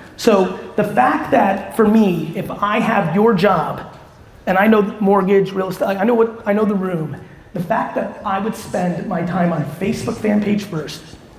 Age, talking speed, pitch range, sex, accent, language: 30-49, 195 wpm, 165-210 Hz, male, American, English